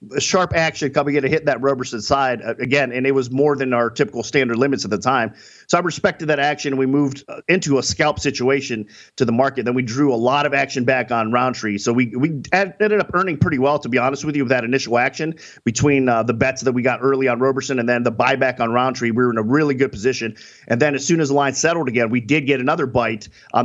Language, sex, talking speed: English, male, 255 wpm